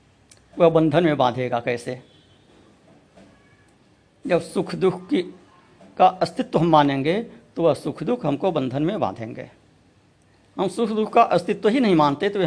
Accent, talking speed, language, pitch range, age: native, 150 wpm, Hindi, 125-200 Hz, 60-79